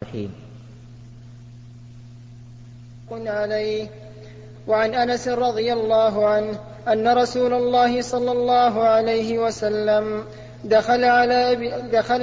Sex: male